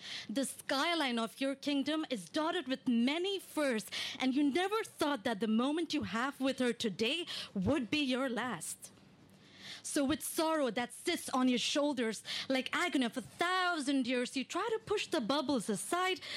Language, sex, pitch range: English, female, 225-295 Hz